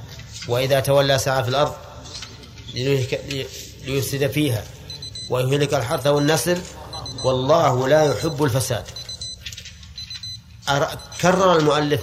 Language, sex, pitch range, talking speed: Arabic, male, 105-140 Hz, 80 wpm